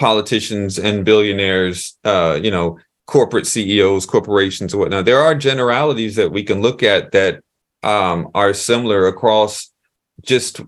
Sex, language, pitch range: male, English, 100-120 Hz